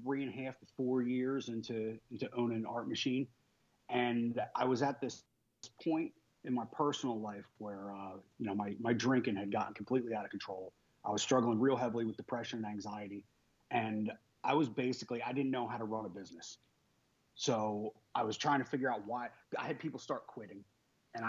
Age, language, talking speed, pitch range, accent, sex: 30-49, English, 200 wpm, 105-125 Hz, American, male